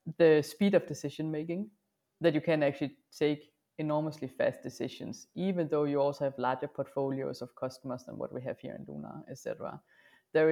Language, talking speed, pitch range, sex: English, 175 wpm, 135-160 Hz, female